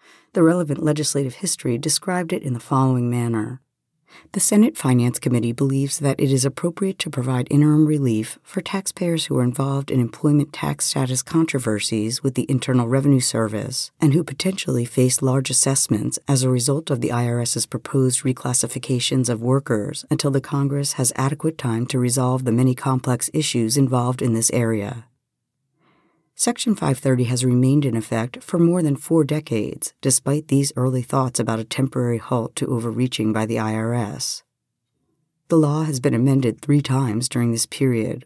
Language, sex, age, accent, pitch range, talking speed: English, female, 50-69, American, 120-150 Hz, 165 wpm